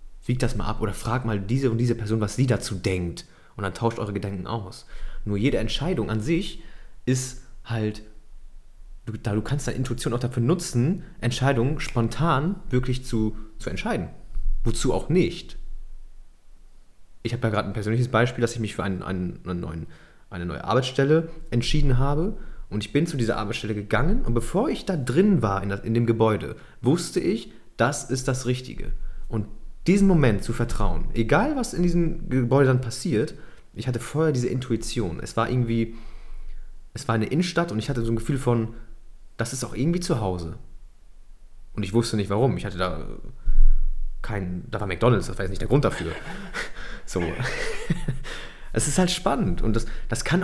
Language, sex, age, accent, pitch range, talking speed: German, male, 30-49, German, 100-130 Hz, 180 wpm